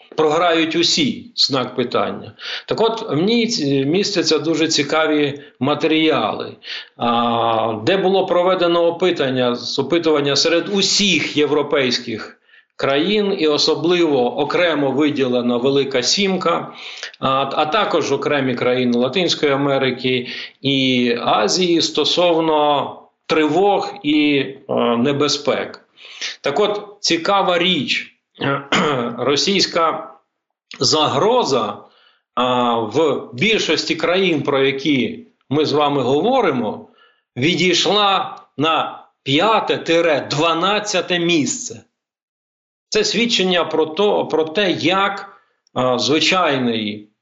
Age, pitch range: 50-69, 135-175 Hz